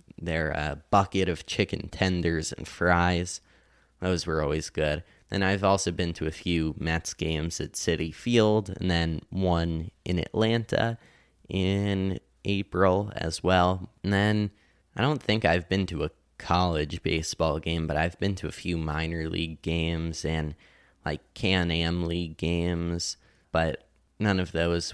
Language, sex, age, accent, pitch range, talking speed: English, male, 20-39, American, 85-100 Hz, 150 wpm